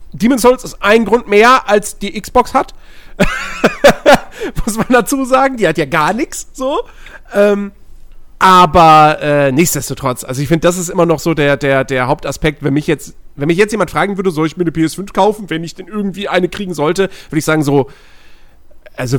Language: German